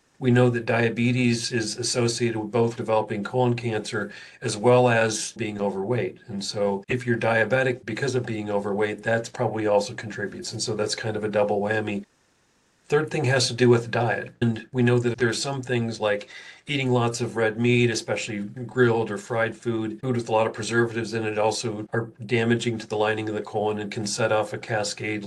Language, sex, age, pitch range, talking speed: English, male, 40-59, 110-125 Hz, 205 wpm